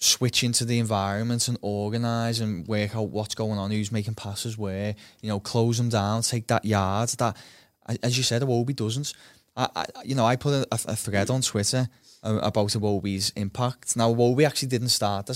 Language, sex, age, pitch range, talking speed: English, male, 20-39, 105-125 Hz, 195 wpm